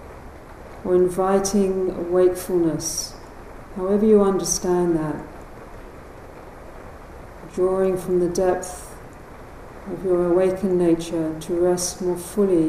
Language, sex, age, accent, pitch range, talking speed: English, female, 50-69, British, 160-185 Hz, 90 wpm